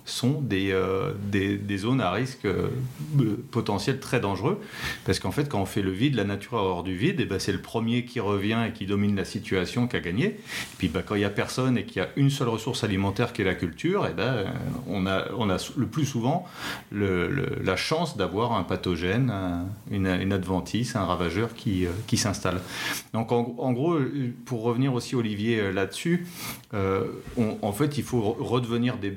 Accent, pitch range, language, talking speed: French, 95-125 Hz, French, 215 wpm